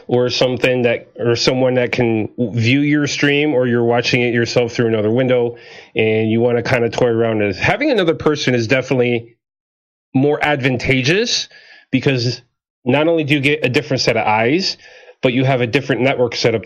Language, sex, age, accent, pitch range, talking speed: English, male, 30-49, American, 120-155 Hz, 185 wpm